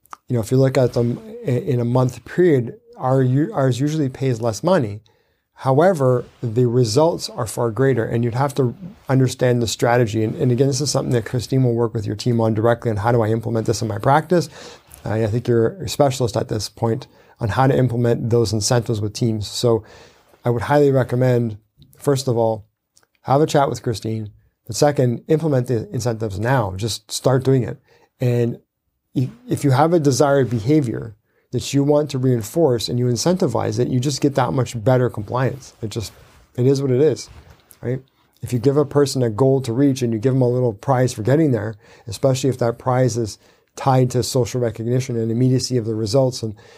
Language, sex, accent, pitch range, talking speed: English, male, American, 115-135 Hz, 200 wpm